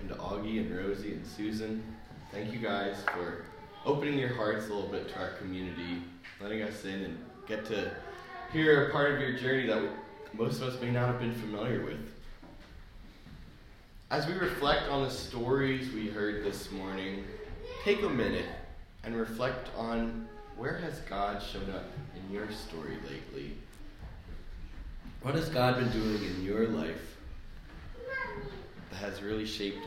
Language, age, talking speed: English, 20-39, 155 wpm